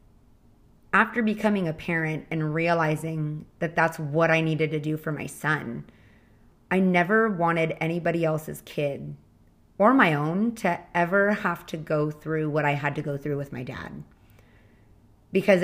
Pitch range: 155-190 Hz